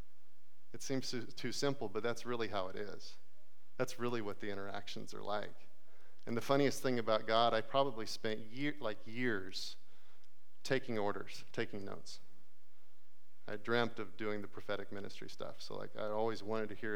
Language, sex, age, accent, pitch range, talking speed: English, male, 40-59, American, 110-140 Hz, 170 wpm